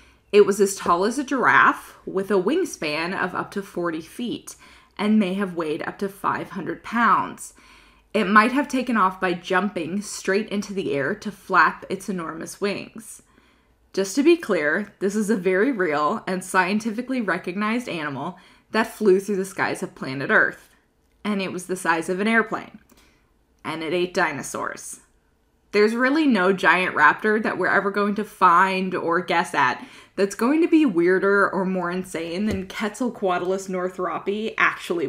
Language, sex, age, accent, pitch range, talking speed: English, female, 20-39, American, 180-225 Hz, 170 wpm